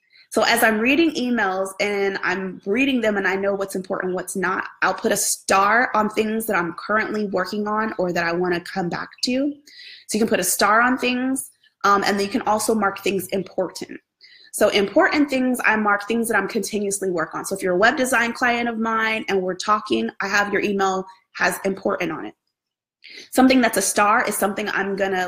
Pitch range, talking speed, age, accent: 195-240 Hz, 215 wpm, 20-39, American